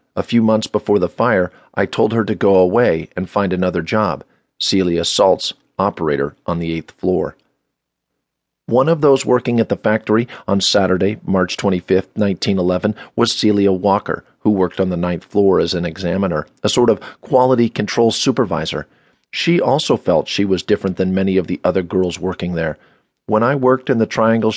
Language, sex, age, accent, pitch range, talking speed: English, male, 40-59, American, 95-125 Hz, 180 wpm